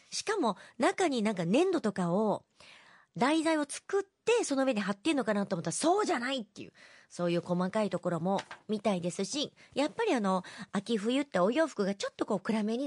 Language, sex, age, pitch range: Japanese, male, 40-59, 200-285 Hz